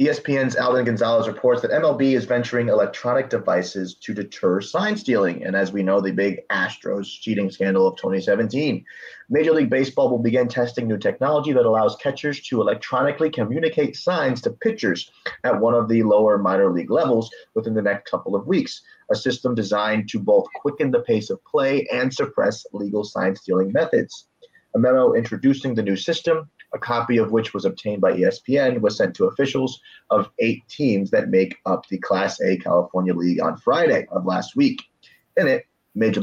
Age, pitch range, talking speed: 30-49, 105-150 Hz, 180 wpm